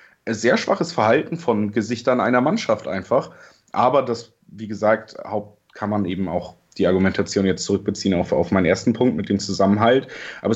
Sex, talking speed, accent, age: male, 165 wpm, German, 30-49